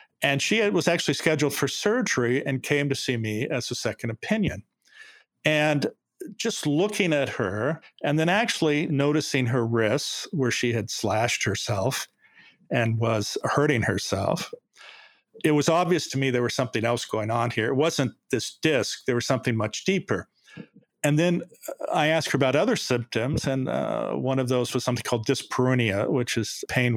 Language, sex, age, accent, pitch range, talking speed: English, male, 50-69, American, 120-155 Hz, 170 wpm